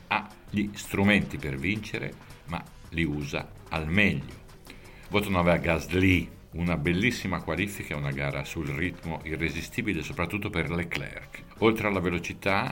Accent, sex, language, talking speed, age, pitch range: native, male, Italian, 130 wpm, 50-69, 75-100 Hz